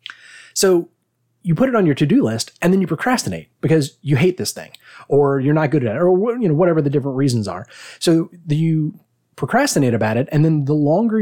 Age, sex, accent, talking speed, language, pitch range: 30-49, male, American, 215 wpm, English, 120-160 Hz